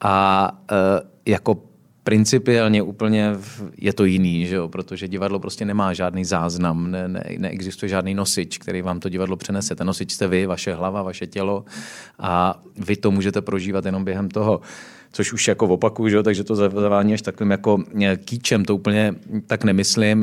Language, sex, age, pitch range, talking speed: Czech, male, 30-49, 95-110 Hz, 180 wpm